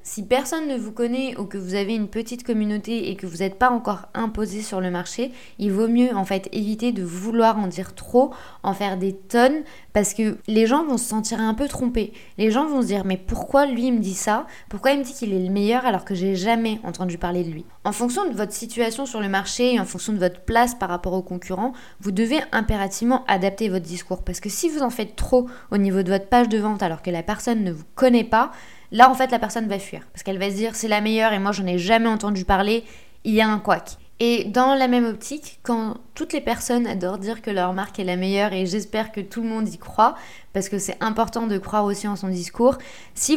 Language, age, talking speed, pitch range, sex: French, 20-39, 255 wpm, 195-245 Hz, female